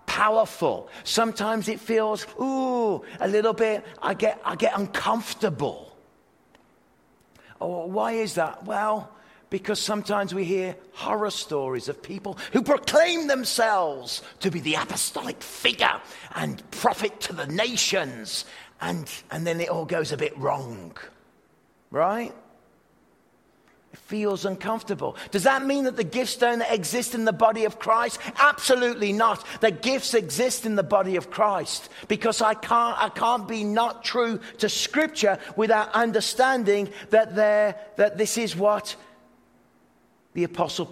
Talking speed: 135 wpm